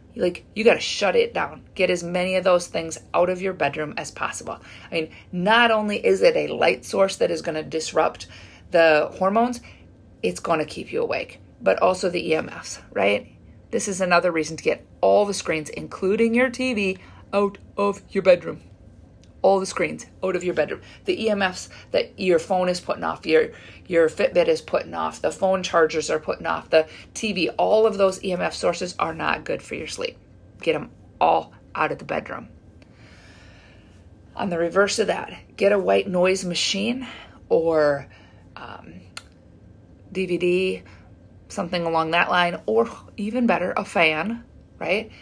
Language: English